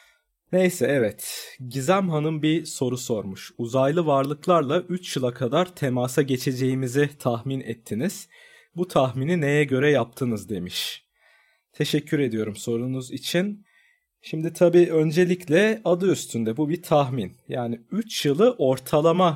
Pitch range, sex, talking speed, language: 130-170 Hz, male, 120 wpm, Turkish